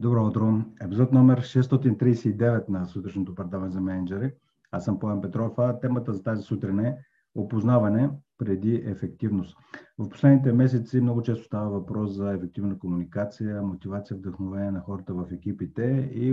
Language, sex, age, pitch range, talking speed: Bulgarian, male, 50-69, 95-120 Hz, 145 wpm